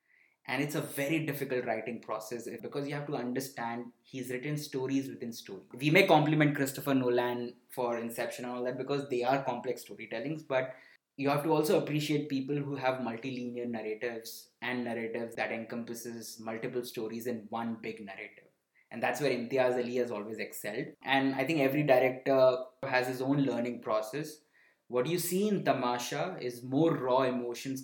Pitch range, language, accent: 120-135 Hz, English, Indian